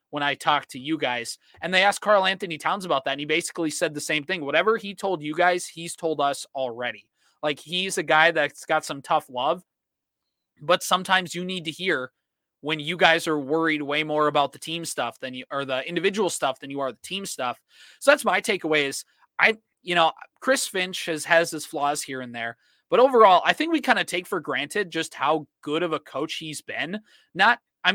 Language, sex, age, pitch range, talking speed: English, male, 20-39, 145-185 Hz, 225 wpm